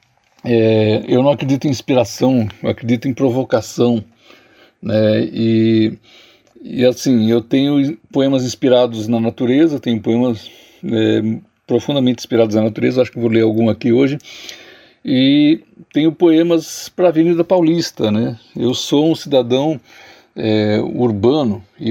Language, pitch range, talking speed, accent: Portuguese, 115-140 Hz, 135 wpm, Brazilian